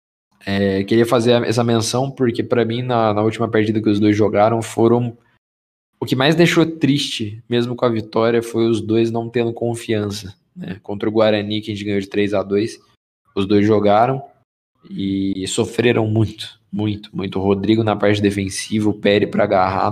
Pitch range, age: 105-115 Hz, 20-39